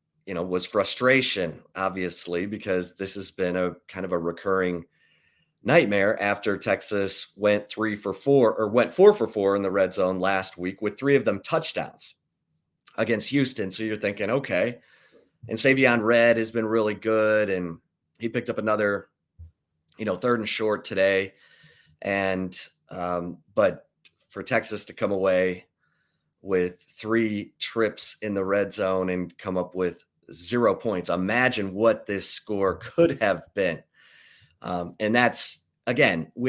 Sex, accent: male, American